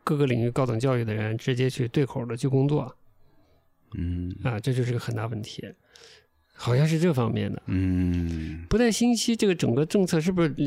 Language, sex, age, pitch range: Chinese, male, 50-69, 115-170 Hz